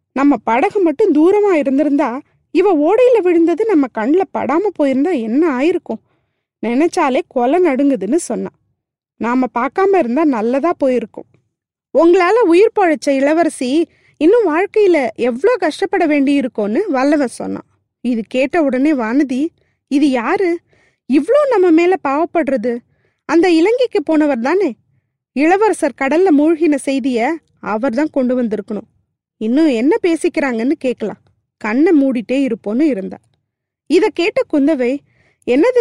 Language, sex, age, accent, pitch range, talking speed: Tamil, female, 20-39, native, 255-350 Hz, 110 wpm